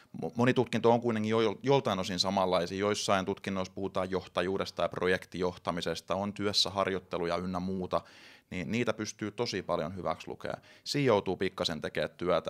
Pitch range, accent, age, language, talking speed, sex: 90-100 Hz, native, 20-39, Finnish, 155 wpm, male